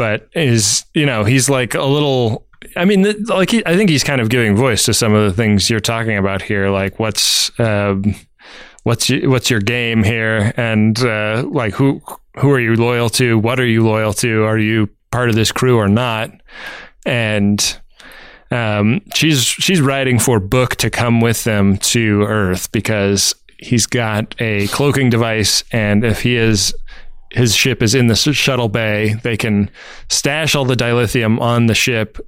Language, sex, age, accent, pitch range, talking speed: English, male, 20-39, American, 105-125 Hz, 180 wpm